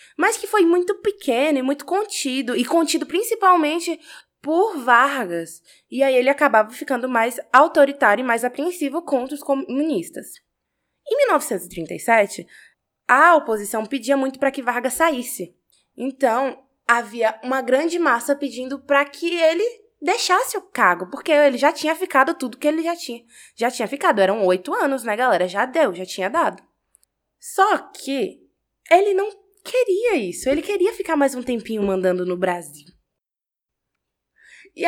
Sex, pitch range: female, 245-330 Hz